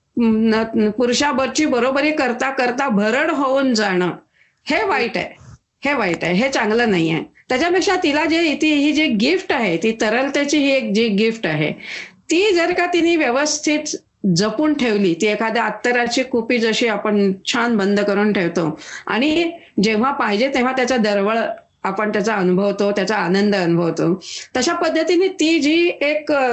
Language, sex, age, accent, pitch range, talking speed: Marathi, female, 40-59, native, 215-310 Hz, 155 wpm